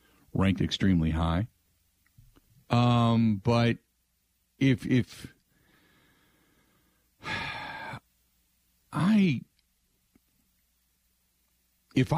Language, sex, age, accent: English, male, 50-69, American